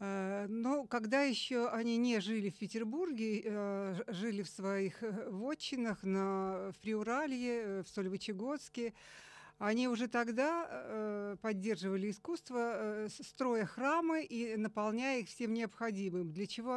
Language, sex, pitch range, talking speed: Russian, female, 195-235 Hz, 105 wpm